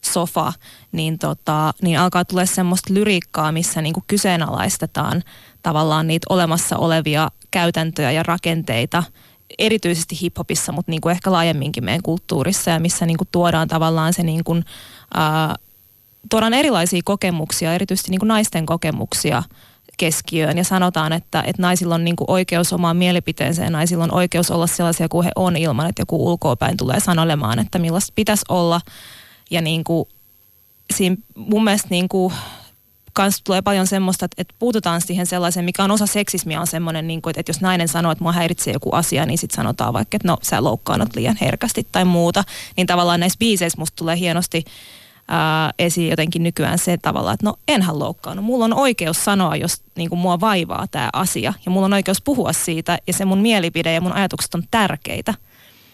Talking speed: 170 wpm